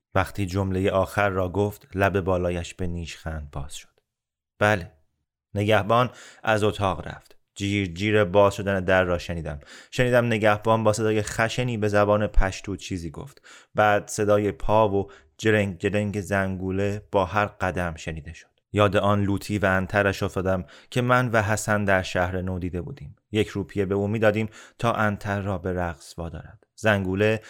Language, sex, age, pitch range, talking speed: Persian, male, 30-49, 95-105 Hz, 160 wpm